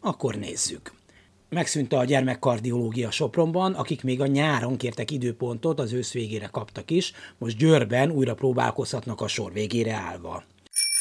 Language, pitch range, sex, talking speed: Hungarian, 115-140 Hz, male, 135 wpm